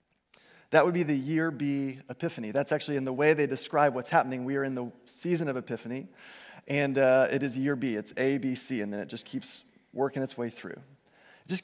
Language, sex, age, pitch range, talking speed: English, male, 30-49, 140-190 Hz, 225 wpm